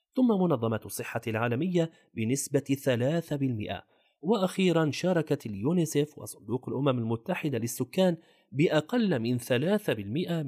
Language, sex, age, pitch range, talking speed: Arabic, male, 30-49, 115-165 Hz, 90 wpm